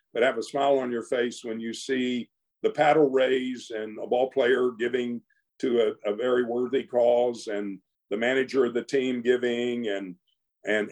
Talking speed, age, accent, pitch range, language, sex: 180 wpm, 50-69, American, 120-185 Hz, English, male